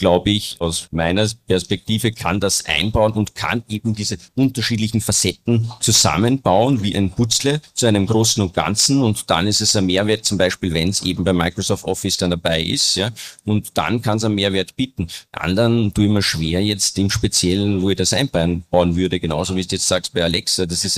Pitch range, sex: 95-120 Hz, male